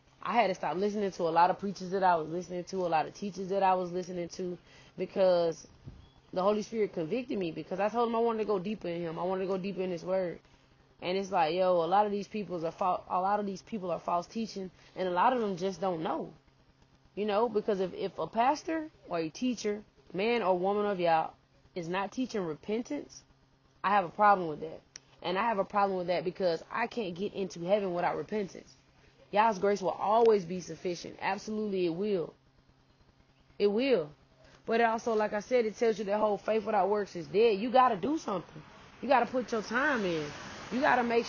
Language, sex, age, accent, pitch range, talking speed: English, female, 20-39, American, 180-230 Hz, 225 wpm